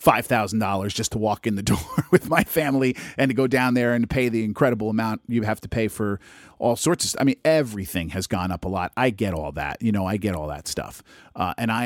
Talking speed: 260 wpm